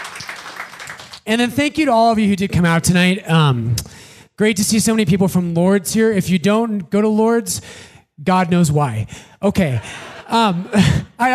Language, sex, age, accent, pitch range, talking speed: English, male, 30-49, American, 170-230 Hz, 185 wpm